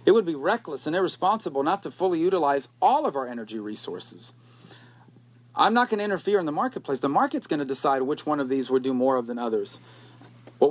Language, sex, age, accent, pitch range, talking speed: English, male, 40-59, American, 135-185 Hz, 225 wpm